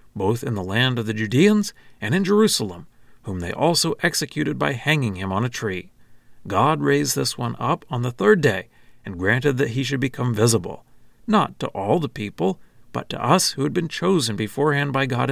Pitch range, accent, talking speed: 115-155 Hz, American, 200 wpm